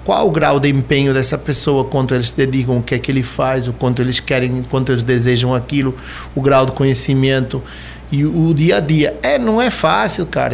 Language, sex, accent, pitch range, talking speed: Portuguese, male, Brazilian, 125-175 Hz, 220 wpm